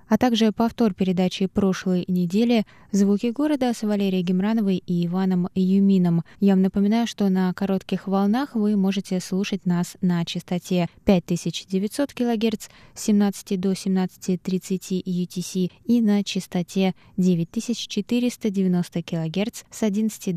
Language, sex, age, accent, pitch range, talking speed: Russian, female, 20-39, native, 170-205 Hz, 120 wpm